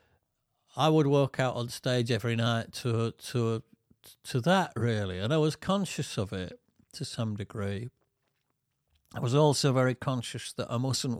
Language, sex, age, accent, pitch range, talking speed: English, male, 50-69, British, 105-130 Hz, 160 wpm